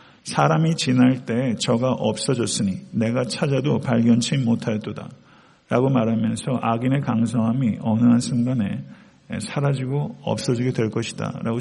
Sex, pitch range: male, 115-135 Hz